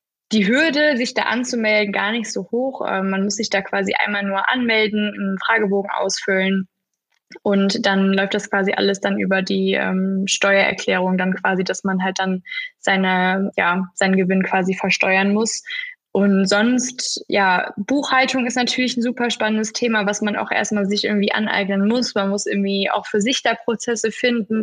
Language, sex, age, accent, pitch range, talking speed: German, female, 20-39, German, 190-220 Hz, 165 wpm